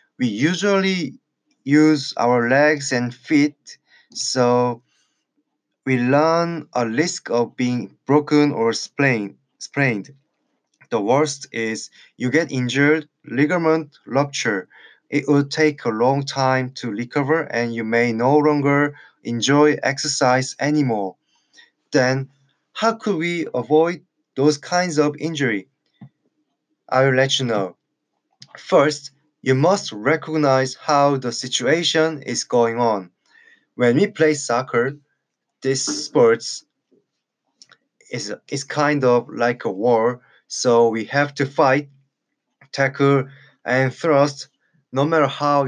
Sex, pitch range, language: male, 125-155 Hz, Korean